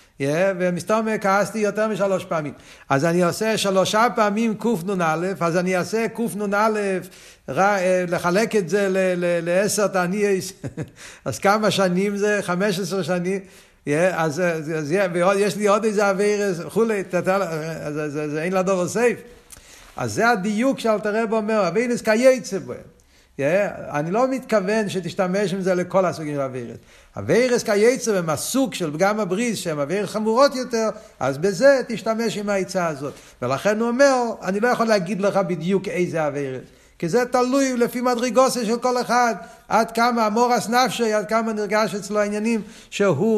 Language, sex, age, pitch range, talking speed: Hebrew, male, 60-79, 180-220 Hz, 150 wpm